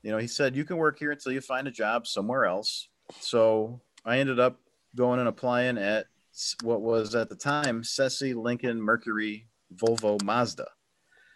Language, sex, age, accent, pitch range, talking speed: English, male, 40-59, American, 95-120 Hz, 175 wpm